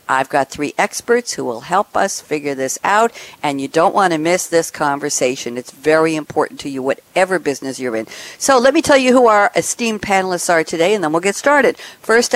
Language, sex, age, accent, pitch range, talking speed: English, female, 60-79, American, 145-200 Hz, 220 wpm